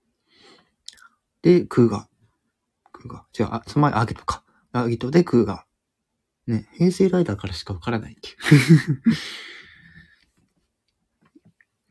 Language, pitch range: Japanese, 105-125 Hz